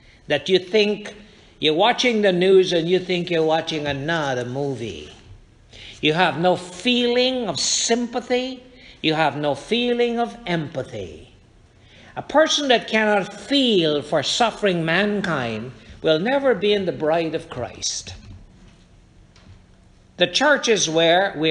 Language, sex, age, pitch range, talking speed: English, male, 60-79, 130-215 Hz, 130 wpm